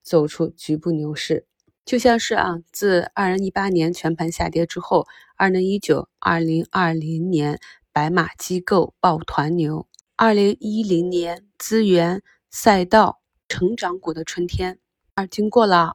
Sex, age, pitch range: female, 20-39, 170-195 Hz